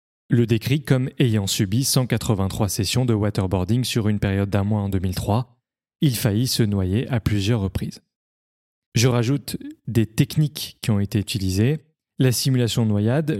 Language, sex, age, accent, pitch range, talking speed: French, male, 30-49, French, 105-130 Hz, 155 wpm